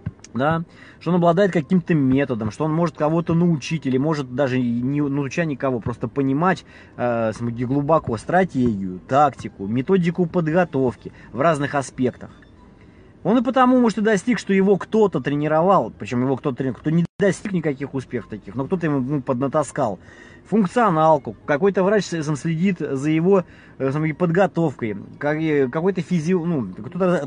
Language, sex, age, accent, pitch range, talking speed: Russian, male, 20-39, native, 130-175 Hz, 145 wpm